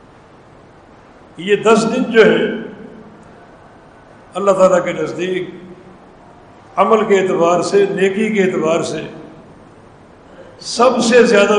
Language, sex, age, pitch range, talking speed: English, male, 60-79, 190-220 Hz, 105 wpm